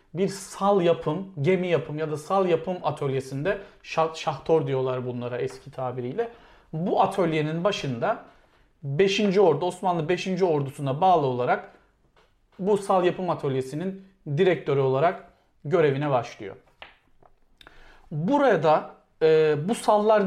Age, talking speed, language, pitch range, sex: 40-59, 115 wpm, Turkish, 140-200 Hz, male